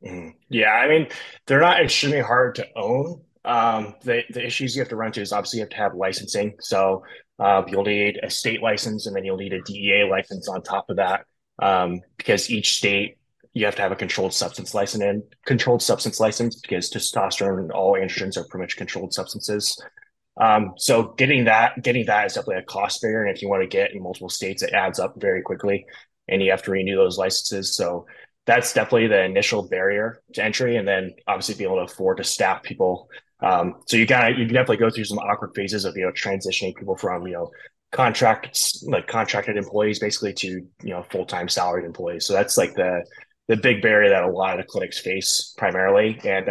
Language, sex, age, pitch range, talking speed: English, male, 20-39, 95-110 Hz, 215 wpm